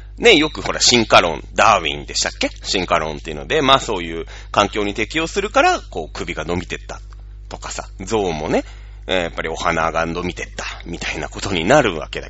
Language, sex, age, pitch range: Japanese, male, 30-49, 85-135 Hz